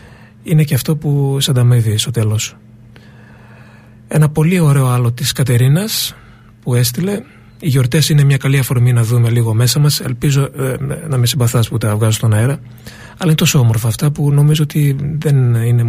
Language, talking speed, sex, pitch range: Greek, 170 wpm, male, 115-140 Hz